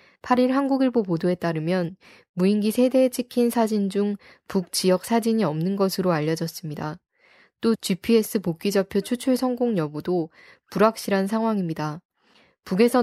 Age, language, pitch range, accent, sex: 10-29, Korean, 175-220 Hz, native, female